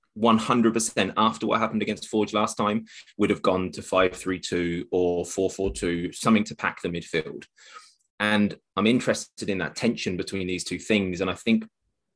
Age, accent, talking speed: 20-39, British, 165 wpm